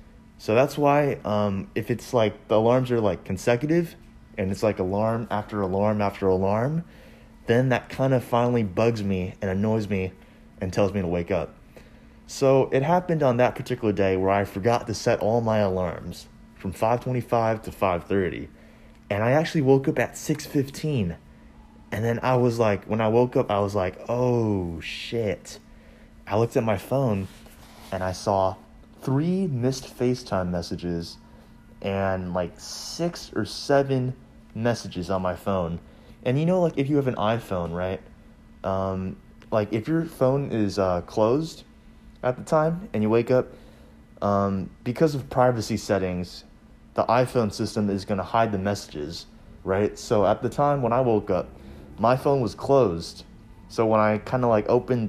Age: 20-39